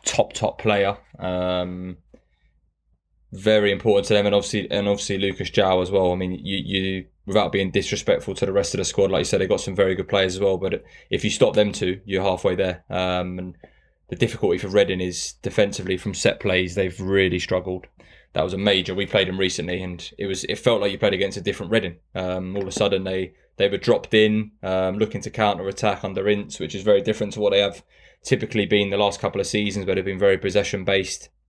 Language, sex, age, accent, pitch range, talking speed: English, male, 10-29, British, 95-105 Hz, 225 wpm